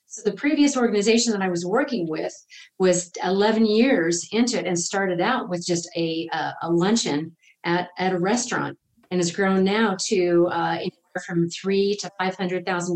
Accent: American